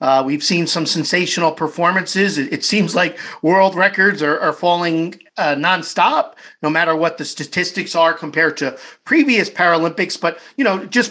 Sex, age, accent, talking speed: male, 50-69, American, 165 wpm